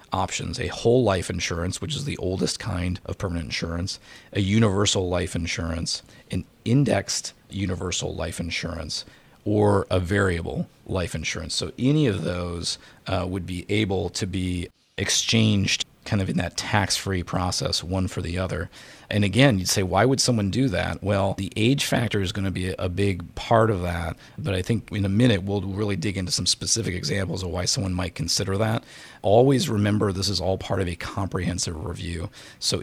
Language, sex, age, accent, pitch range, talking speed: English, male, 40-59, American, 90-105 Hz, 185 wpm